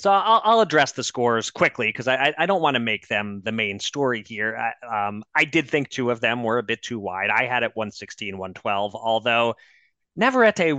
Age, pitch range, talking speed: 30-49, 105-145 Hz, 205 wpm